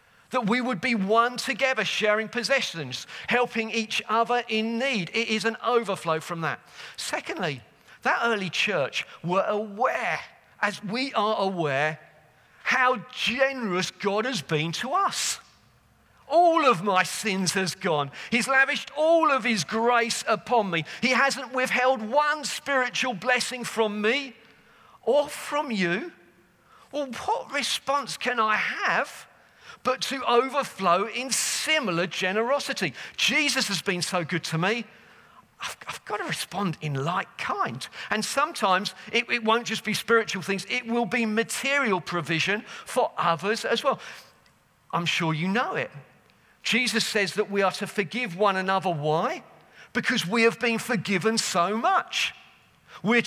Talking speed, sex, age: 145 wpm, male, 40-59